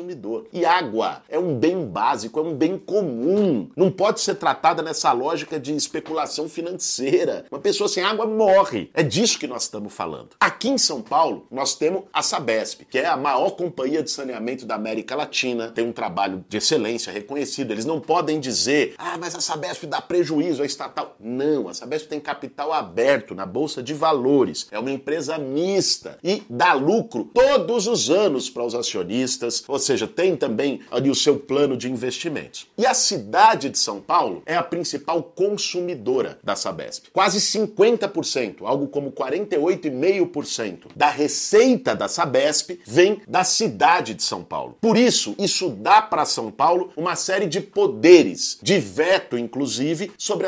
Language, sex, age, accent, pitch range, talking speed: Portuguese, male, 50-69, Brazilian, 135-190 Hz, 170 wpm